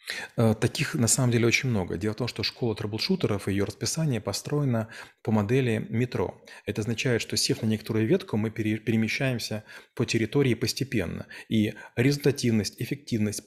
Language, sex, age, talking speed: Russian, male, 30-49, 145 wpm